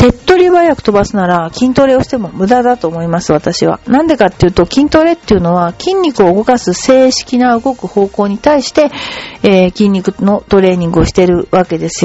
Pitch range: 190-285 Hz